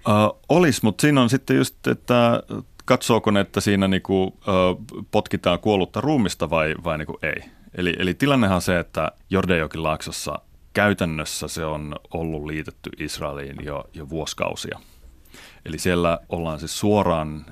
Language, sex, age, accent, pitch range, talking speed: Finnish, male, 30-49, native, 75-95 Hz, 140 wpm